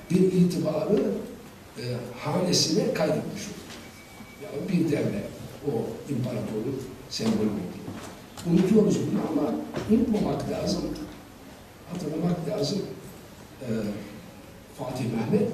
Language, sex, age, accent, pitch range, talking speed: Turkish, male, 60-79, native, 140-205 Hz, 90 wpm